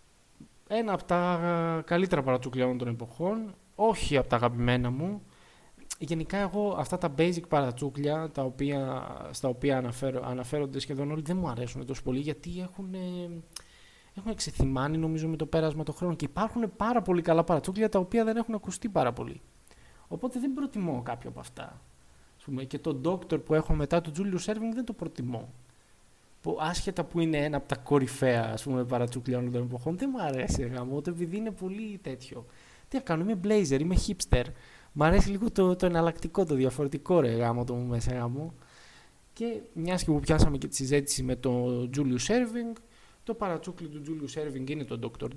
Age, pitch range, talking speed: 20-39, 130-185 Hz, 175 wpm